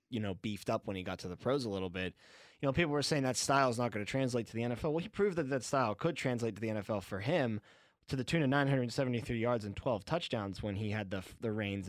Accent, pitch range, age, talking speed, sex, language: American, 105-135 Hz, 20-39, 285 wpm, male, English